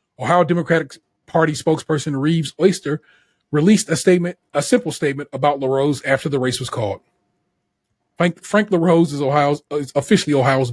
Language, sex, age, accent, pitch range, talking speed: English, male, 30-49, American, 130-170 Hz, 145 wpm